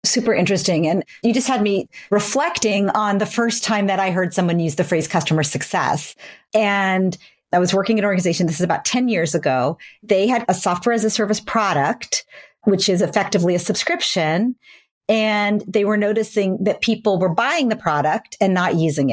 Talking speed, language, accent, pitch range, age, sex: 190 wpm, English, American, 170-215 Hz, 40-59, female